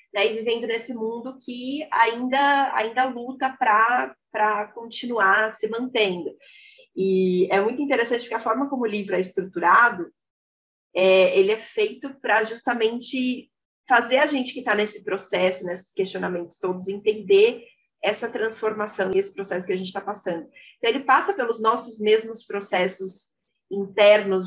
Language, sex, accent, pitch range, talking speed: Portuguese, female, Brazilian, 190-255 Hz, 150 wpm